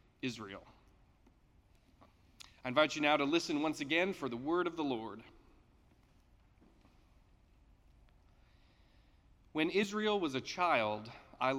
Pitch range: 110-175 Hz